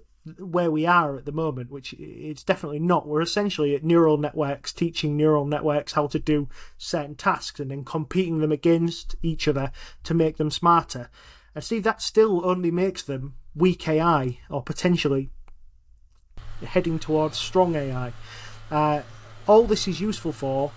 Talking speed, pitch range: 160 wpm, 145-175 Hz